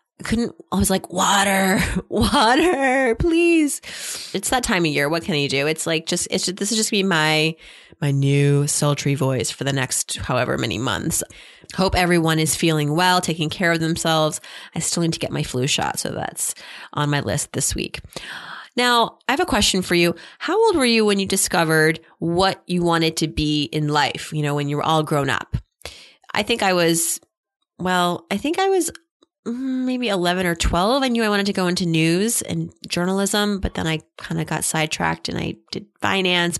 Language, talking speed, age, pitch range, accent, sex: English, 205 wpm, 30-49, 160-205 Hz, American, female